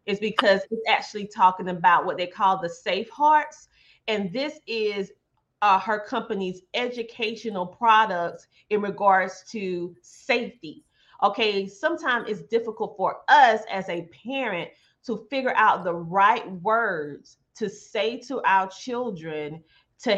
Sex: female